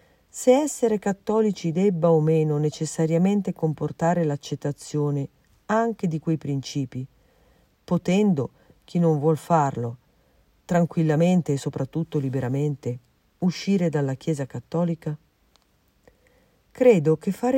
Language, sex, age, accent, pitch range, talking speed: Italian, female, 40-59, native, 150-200 Hz, 100 wpm